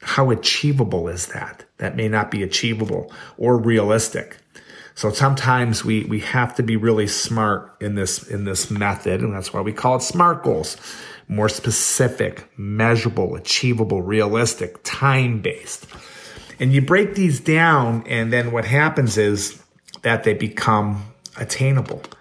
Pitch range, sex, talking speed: 100-120 Hz, male, 145 wpm